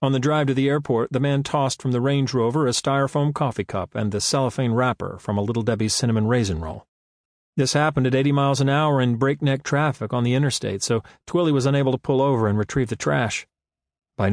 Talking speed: 220 wpm